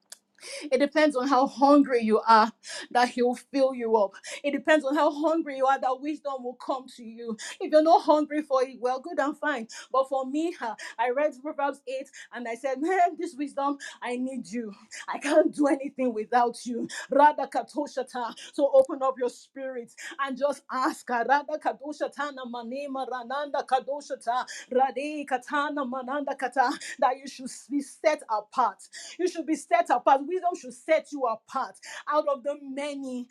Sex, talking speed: female, 155 wpm